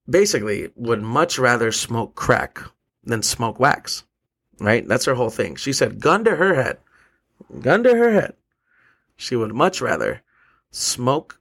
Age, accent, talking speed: 30-49, American, 155 wpm